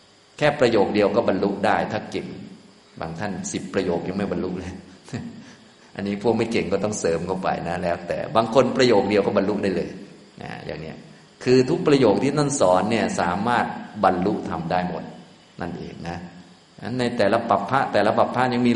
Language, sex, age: Thai, male, 20-39